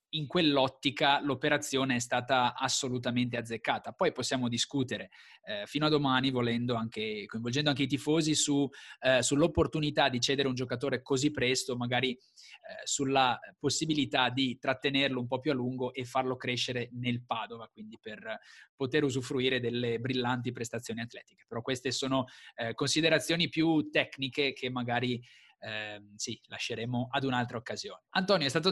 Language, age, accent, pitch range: Italian, 20-39, native, 125-150 Hz